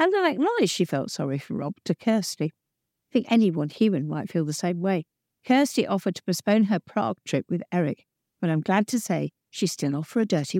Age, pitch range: 50-69, 155-205 Hz